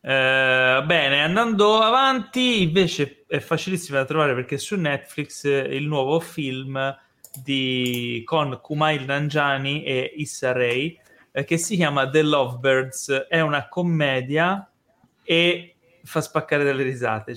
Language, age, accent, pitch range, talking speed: Italian, 20-39, native, 125-155 Hz, 125 wpm